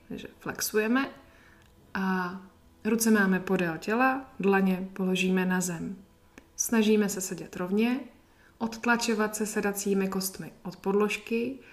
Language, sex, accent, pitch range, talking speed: Czech, female, native, 190-225 Hz, 105 wpm